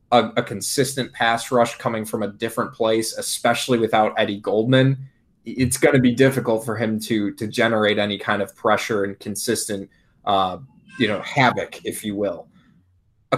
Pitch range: 110-125 Hz